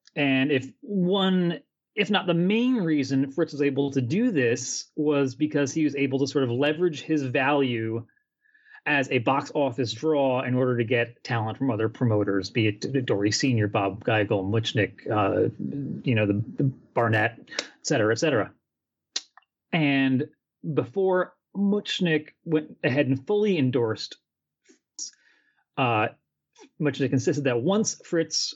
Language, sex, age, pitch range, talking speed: English, male, 30-49, 120-165 Hz, 150 wpm